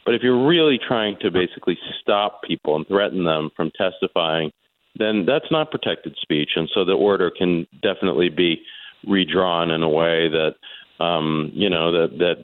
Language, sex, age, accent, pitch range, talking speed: English, male, 40-59, American, 85-100 Hz, 170 wpm